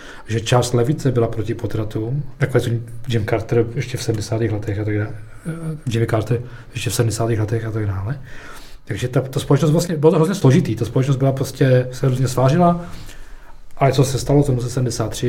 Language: Czech